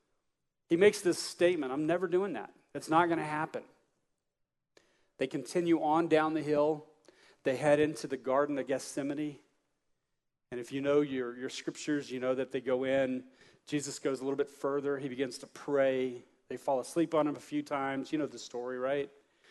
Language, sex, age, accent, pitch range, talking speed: English, male, 40-59, American, 135-155 Hz, 190 wpm